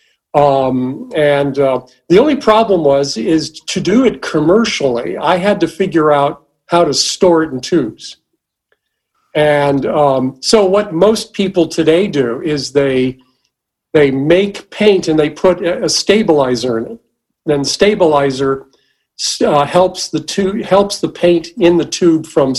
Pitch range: 145-190 Hz